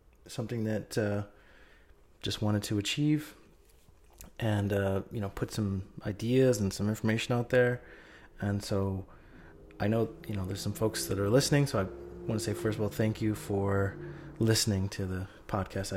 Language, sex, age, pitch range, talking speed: English, male, 30-49, 95-115 Hz, 175 wpm